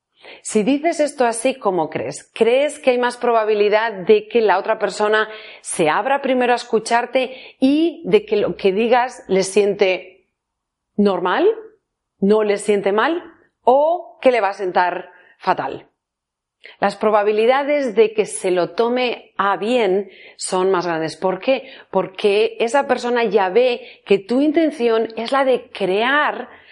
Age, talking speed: 40-59, 150 wpm